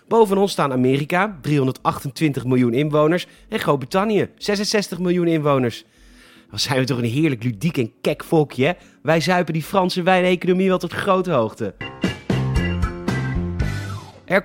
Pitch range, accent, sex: 125-180 Hz, Dutch, male